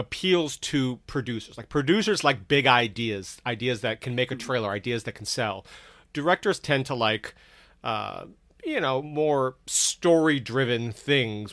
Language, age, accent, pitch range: English, 30-49, American, 115-150 Hz